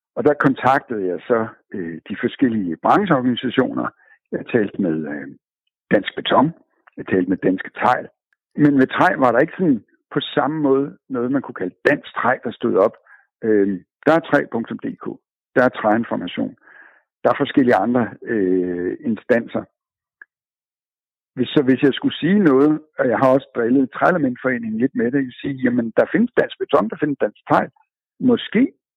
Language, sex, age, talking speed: Danish, male, 60-79, 170 wpm